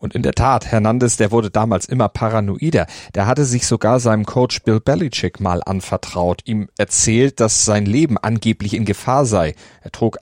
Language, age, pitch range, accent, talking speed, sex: German, 40-59, 100-125 Hz, German, 180 wpm, male